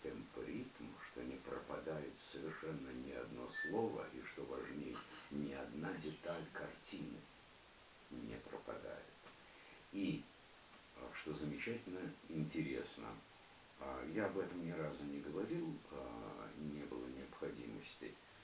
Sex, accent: male, native